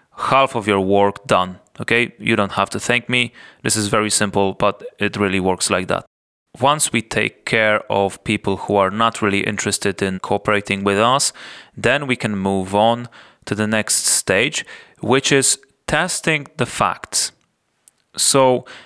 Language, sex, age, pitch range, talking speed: English, male, 30-49, 100-125 Hz, 165 wpm